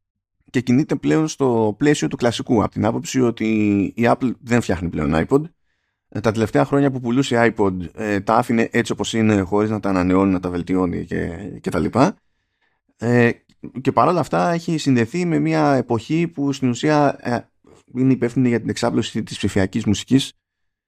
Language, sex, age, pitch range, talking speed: Greek, male, 30-49, 100-140 Hz, 165 wpm